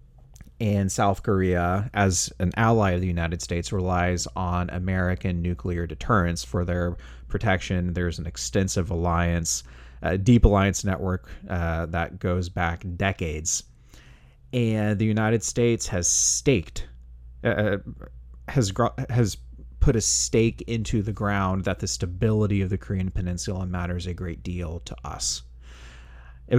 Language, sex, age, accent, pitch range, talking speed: English, male, 30-49, American, 85-105 Hz, 135 wpm